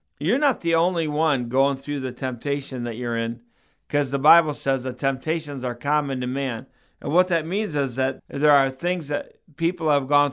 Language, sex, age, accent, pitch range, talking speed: English, male, 50-69, American, 130-160 Hz, 205 wpm